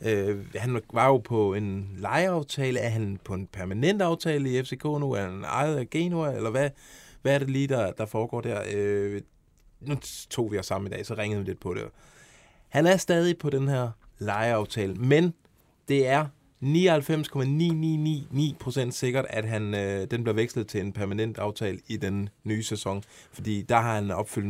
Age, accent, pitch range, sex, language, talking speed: 20-39, native, 105-135 Hz, male, Danish, 185 wpm